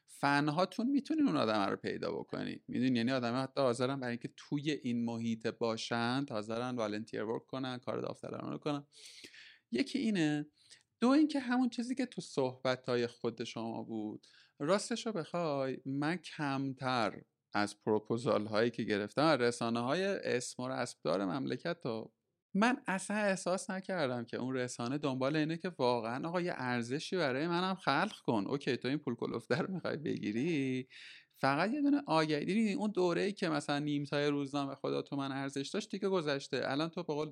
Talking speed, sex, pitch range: 165 wpm, male, 120-175 Hz